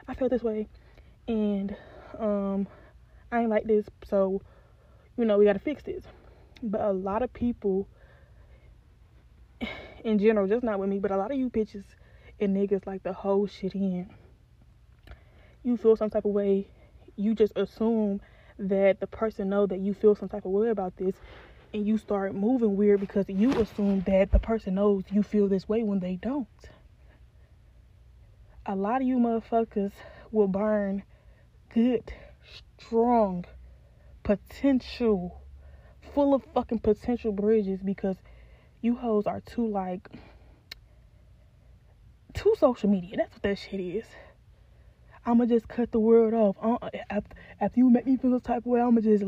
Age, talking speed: 10-29, 155 wpm